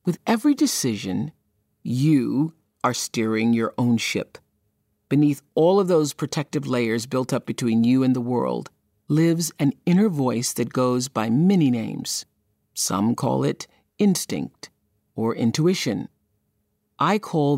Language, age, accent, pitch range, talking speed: English, 40-59, American, 120-165 Hz, 135 wpm